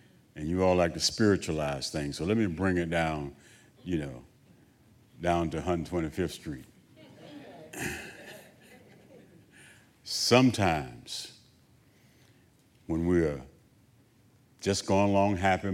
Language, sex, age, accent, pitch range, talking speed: English, male, 60-79, American, 85-115 Hz, 100 wpm